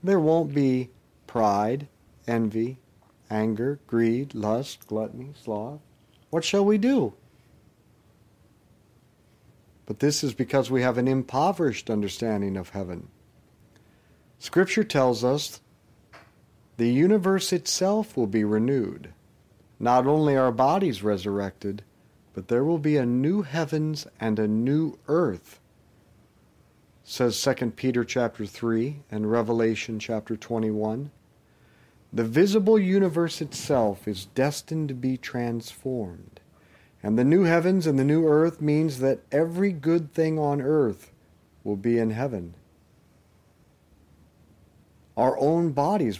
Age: 50-69